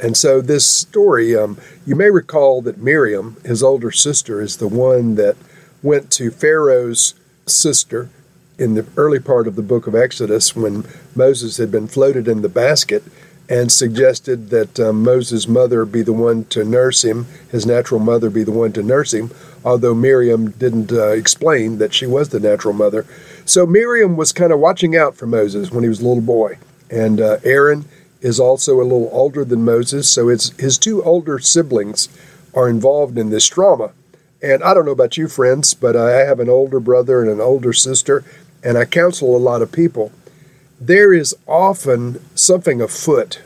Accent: American